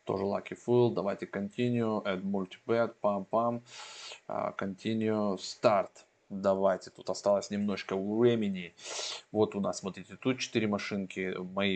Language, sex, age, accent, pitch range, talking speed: Russian, male, 20-39, native, 95-115 Hz, 110 wpm